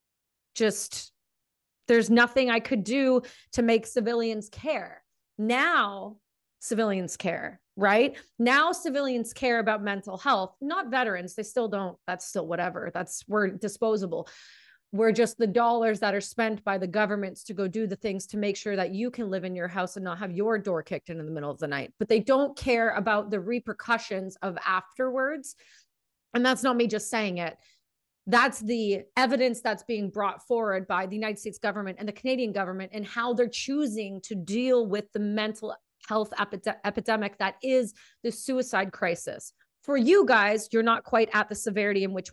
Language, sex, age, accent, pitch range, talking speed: English, female, 30-49, American, 195-245 Hz, 180 wpm